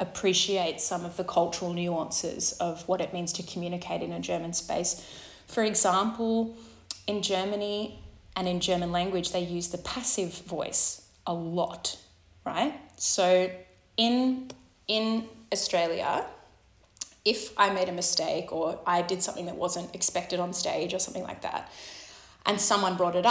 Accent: Australian